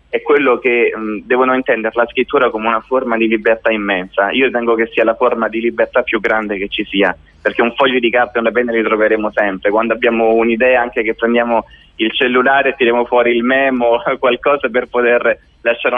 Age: 20-39